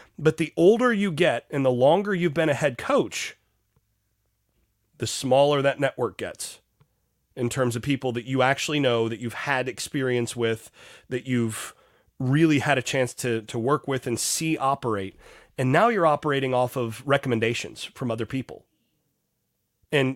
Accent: American